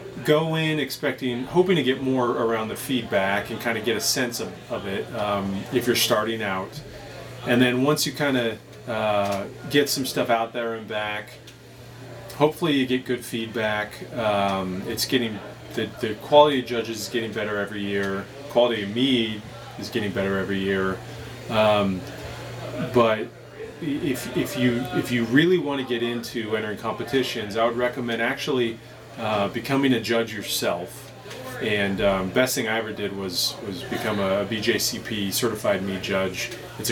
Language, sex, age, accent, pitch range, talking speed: English, male, 30-49, American, 105-125 Hz, 165 wpm